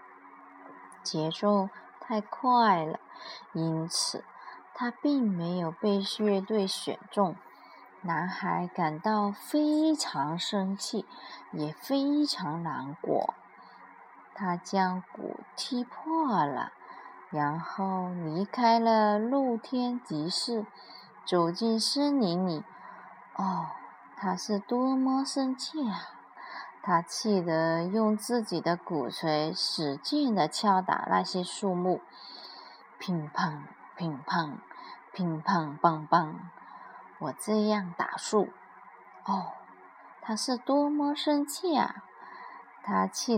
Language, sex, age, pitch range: Chinese, female, 20-39, 175-250 Hz